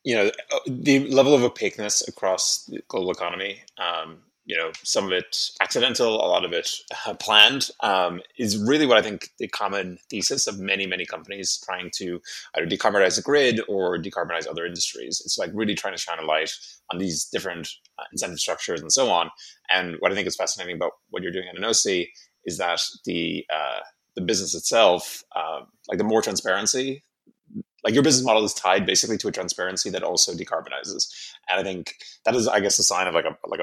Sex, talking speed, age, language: male, 200 wpm, 20-39, English